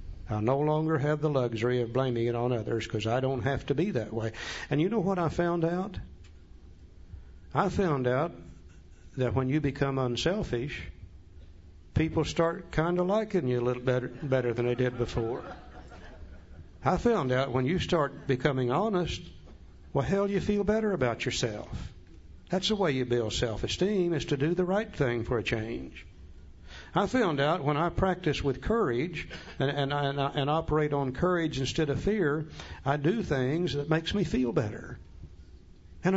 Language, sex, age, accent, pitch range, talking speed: English, male, 60-79, American, 100-155 Hz, 175 wpm